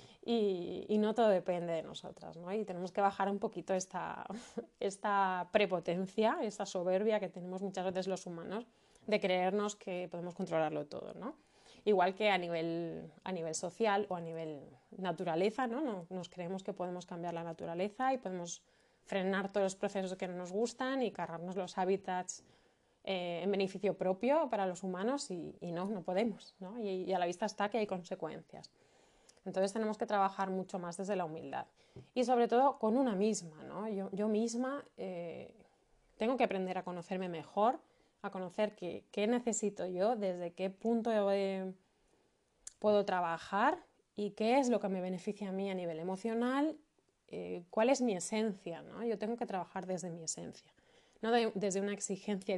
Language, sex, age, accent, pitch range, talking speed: Spanish, female, 20-39, Spanish, 180-215 Hz, 180 wpm